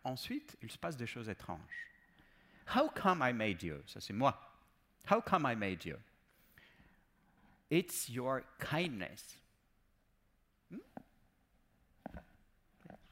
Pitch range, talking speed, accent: 120-180 Hz, 130 wpm, French